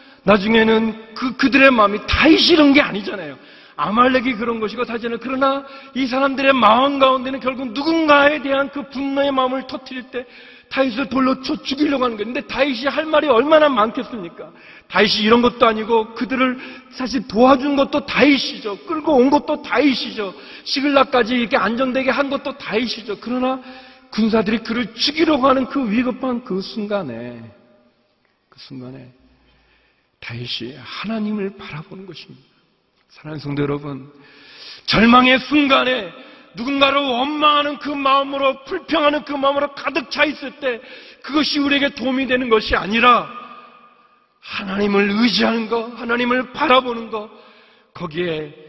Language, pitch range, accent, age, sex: Korean, 205-270 Hz, native, 40-59, male